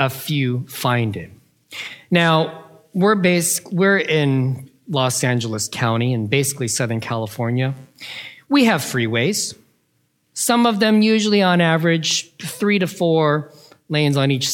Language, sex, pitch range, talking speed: English, male, 135-185 Hz, 130 wpm